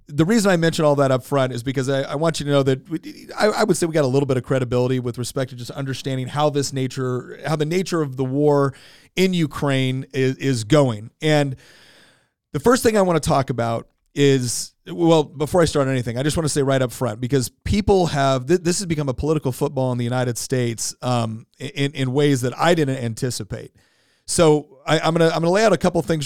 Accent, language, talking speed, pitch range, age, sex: American, English, 245 wpm, 130-155 Hz, 30-49, male